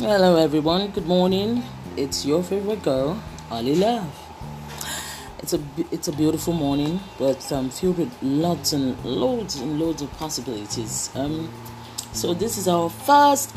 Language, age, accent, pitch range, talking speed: English, 30-49, Nigerian, 120-180 Hz, 150 wpm